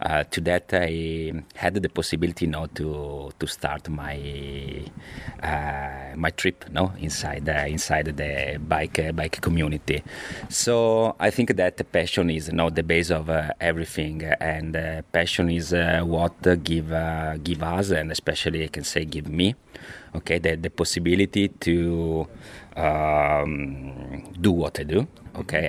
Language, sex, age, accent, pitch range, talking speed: English, male, 30-49, Italian, 80-90 Hz, 150 wpm